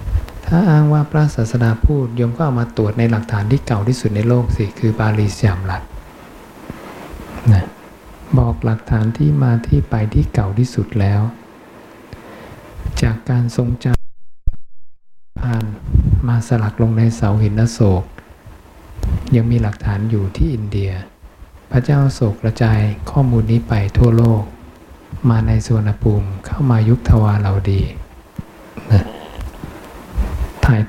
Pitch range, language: 100-120 Hz, English